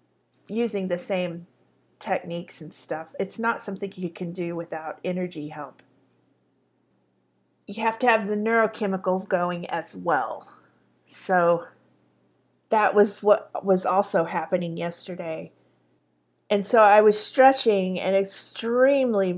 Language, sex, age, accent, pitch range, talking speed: English, female, 40-59, American, 175-235 Hz, 120 wpm